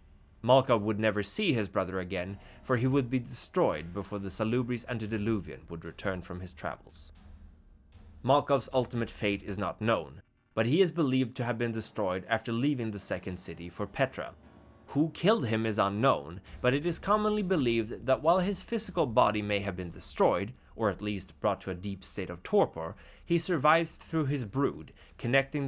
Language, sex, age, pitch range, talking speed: English, male, 20-39, 95-135 Hz, 180 wpm